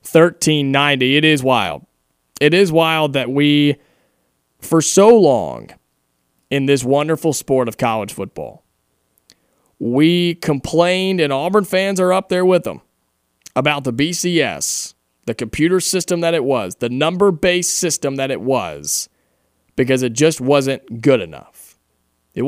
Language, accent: English, American